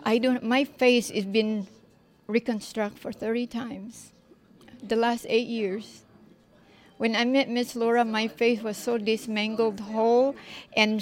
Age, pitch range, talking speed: 40-59, 210-245 Hz, 140 wpm